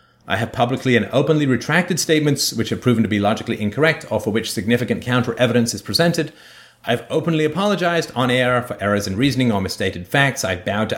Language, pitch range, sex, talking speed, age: English, 100-140 Hz, male, 200 wpm, 30-49